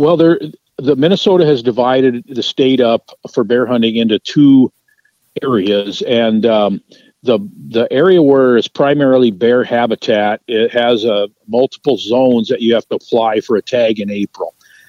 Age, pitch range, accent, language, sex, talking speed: 50-69, 110-130 Hz, American, English, male, 160 wpm